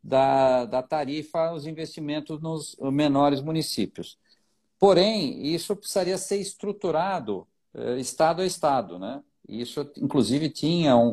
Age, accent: 50-69, Brazilian